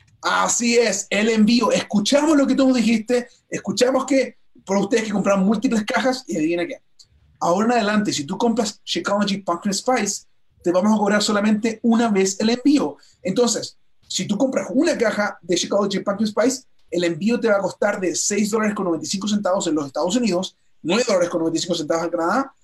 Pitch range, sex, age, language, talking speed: 175-235 Hz, male, 30-49, Spanish, 170 wpm